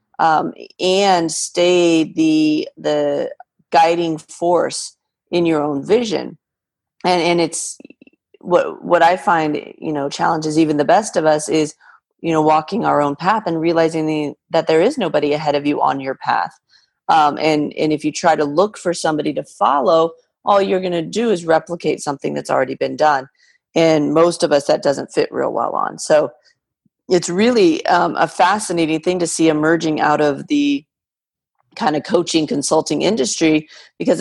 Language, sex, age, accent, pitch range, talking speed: English, female, 40-59, American, 150-180 Hz, 175 wpm